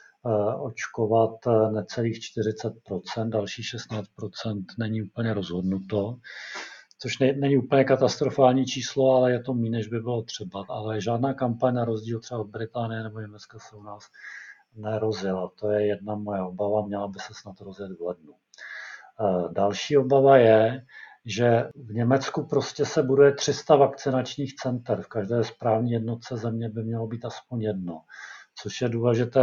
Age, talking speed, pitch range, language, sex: 50-69, 150 wpm, 110-120 Hz, Czech, male